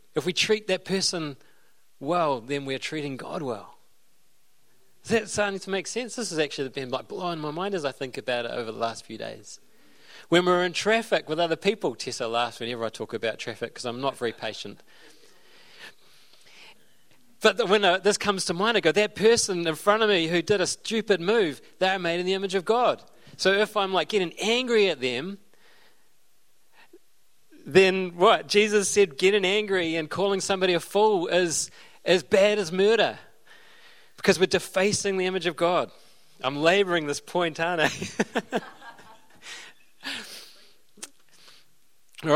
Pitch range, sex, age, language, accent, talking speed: 165-215 Hz, male, 30-49, English, Australian, 170 wpm